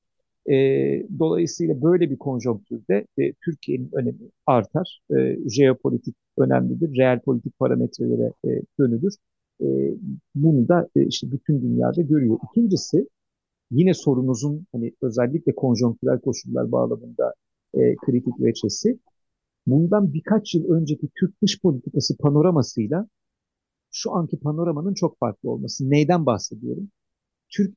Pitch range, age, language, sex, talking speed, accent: 120-170 Hz, 50-69, Turkish, male, 115 wpm, native